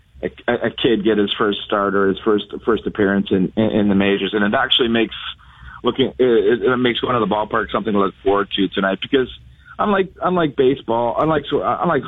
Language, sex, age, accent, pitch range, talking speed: English, male, 40-59, American, 100-130 Hz, 205 wpm